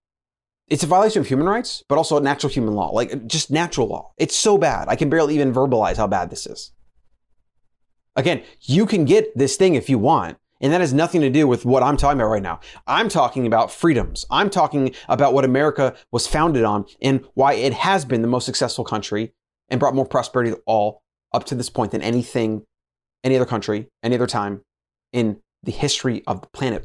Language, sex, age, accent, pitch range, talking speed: English, male, 30-49, American, 115-145 Hz, 210 wpm